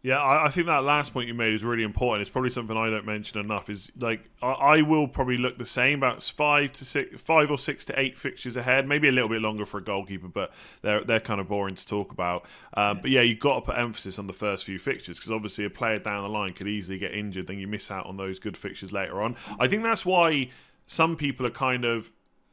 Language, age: English, 30-49